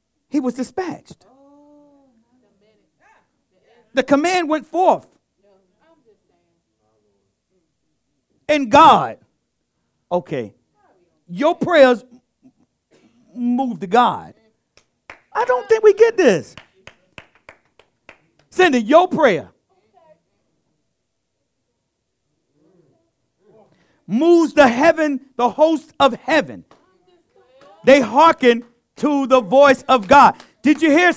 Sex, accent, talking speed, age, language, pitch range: male, American, 80 wpm, 50-69, English, 205-320 Hz